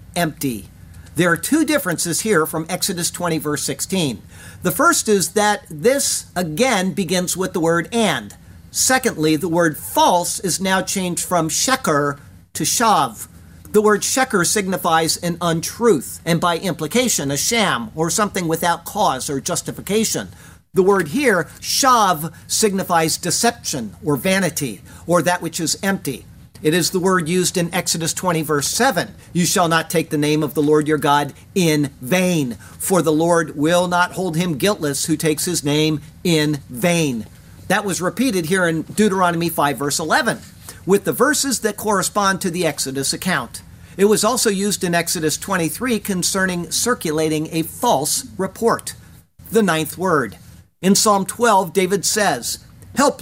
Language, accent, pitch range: English, American, 155-195 Hz